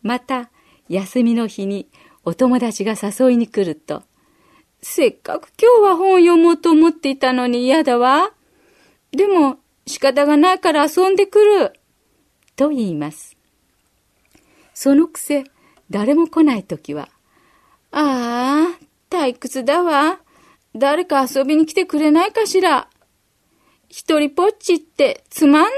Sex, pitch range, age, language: female, 195-305 Hz, 40-59, Japanese